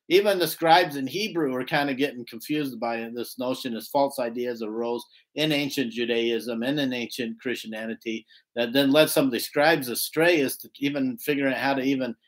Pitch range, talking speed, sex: 125-155 Hz, 195 wpm, male